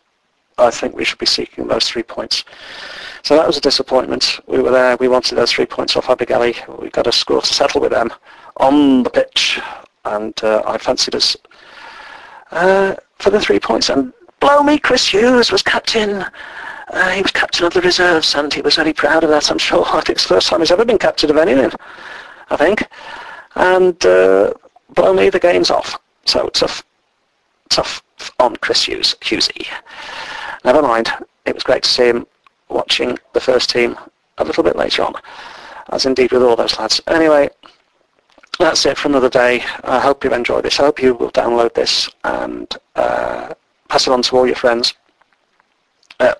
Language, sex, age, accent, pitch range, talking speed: English, male, 50-69, British, 125-200 Hz, 190 wpm